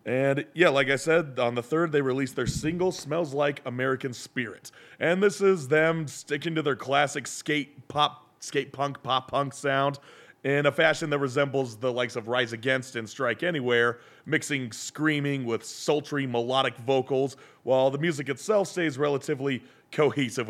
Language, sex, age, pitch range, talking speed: English, male, 30-49, 130-155 Hz, 165 wpm